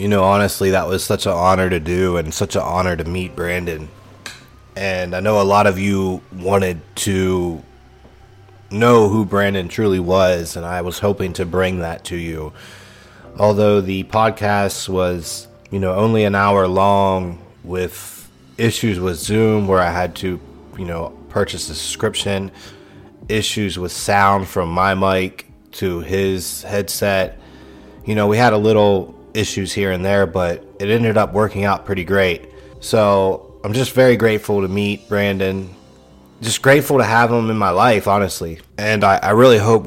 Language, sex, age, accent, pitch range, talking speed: English, male, 30-49, American, 90-105 Hz, 170 wpm